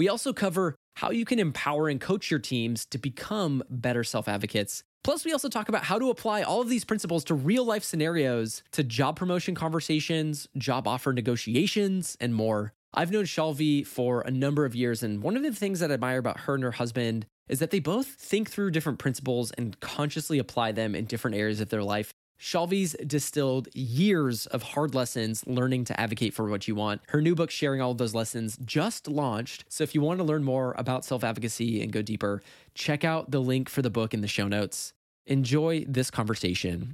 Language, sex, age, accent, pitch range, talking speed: English, male, 20-39, American, 110-155 Hz, 205 wpm